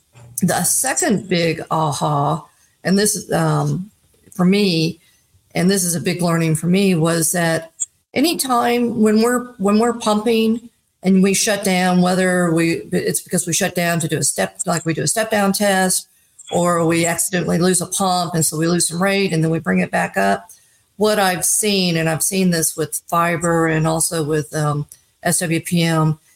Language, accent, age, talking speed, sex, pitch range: English, American, 50-69, 180 wpm, female, 160-190 Hz